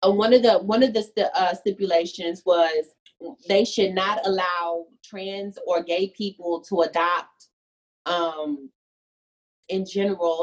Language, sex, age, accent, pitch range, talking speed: English, female, 30-49, American, 170-215 Hz, 130 wpm